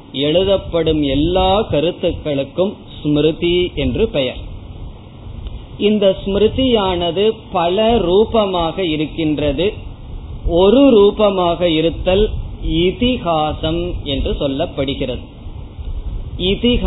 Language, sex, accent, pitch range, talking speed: Tamil, male, native, 135-185 Hz, 55 wpm